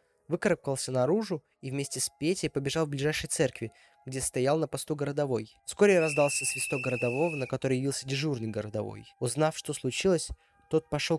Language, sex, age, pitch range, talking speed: Russian, male, 20-39, 130-160 Hz, 155 wpm